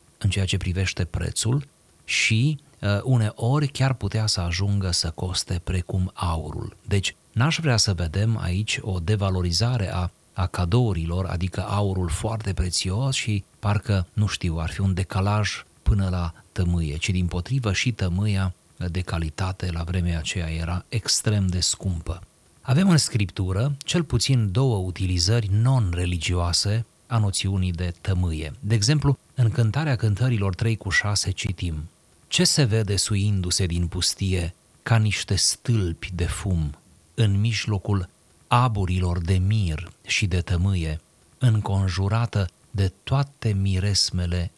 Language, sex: Romanian, male